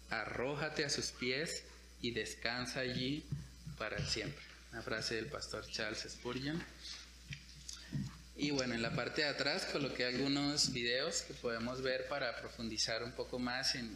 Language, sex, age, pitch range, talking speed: Spanish, male, 20-39, 115-135 Hz, 145 wpm